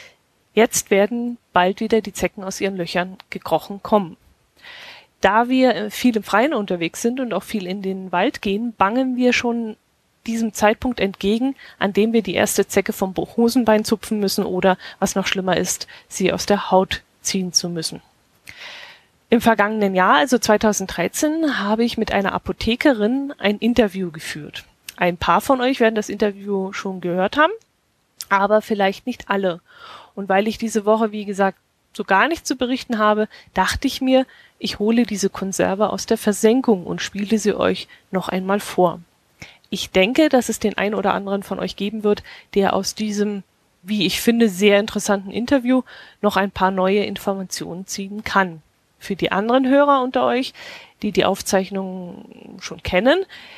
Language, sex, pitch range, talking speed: German, female, 190-230 Hz, 165 wpm